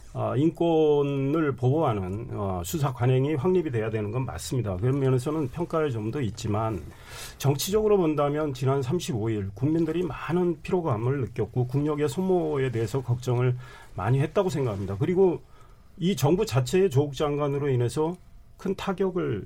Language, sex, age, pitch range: Korean, male, 40-59, 120-165 Hz